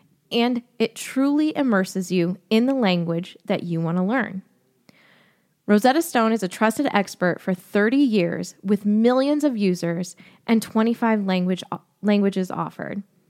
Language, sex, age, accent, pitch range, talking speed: English, female, 20-39, American, 185-235 Hz, 135 wpm